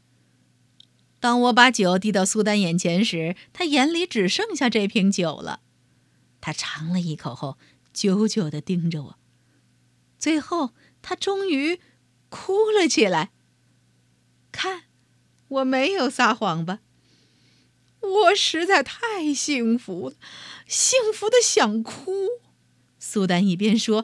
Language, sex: Chinese, female